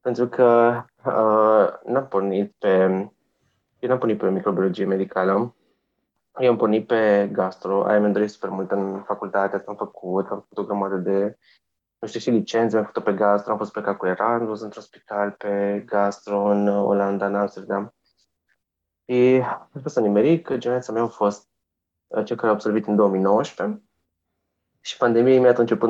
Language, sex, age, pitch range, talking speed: Romanian, male, 20-39, 100-120 Hz, 160 wpm